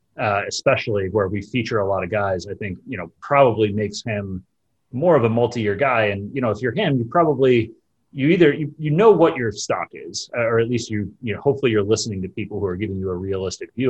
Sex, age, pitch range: male, 30-49, 105-150 Hz